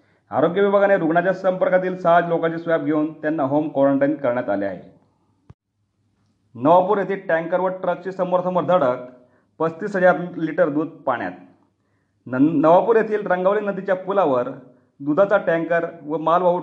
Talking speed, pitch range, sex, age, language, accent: 125 wpm, 150-185 Hz, male, 40-59, Marathi, native